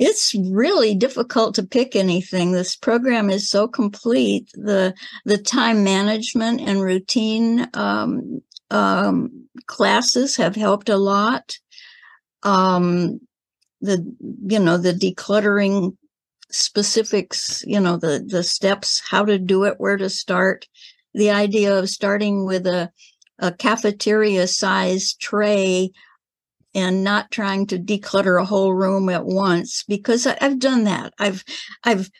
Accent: American